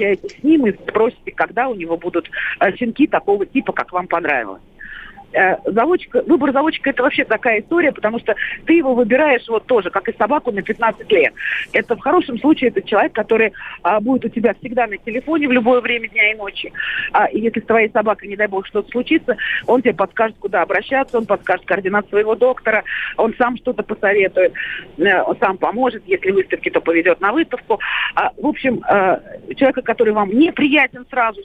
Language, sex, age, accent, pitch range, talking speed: Russian, female, 40-59, native, 205-275 Hz, 175 wpm